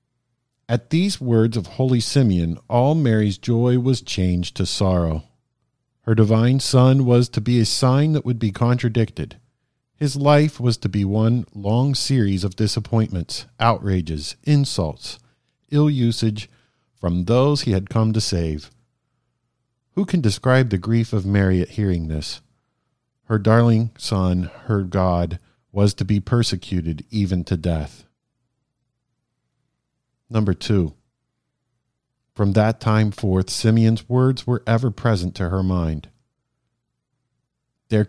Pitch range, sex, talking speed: 95-125 Hz, male, 130 wpm